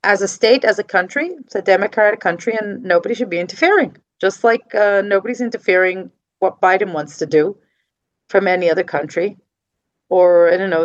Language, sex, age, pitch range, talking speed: English, female, 40-59, 180-235 Hz, 185 wpm